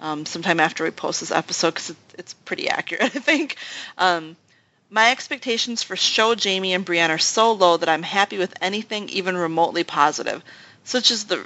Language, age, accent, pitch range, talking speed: English, 30-49, American, 170-230 Hz, 185 wpm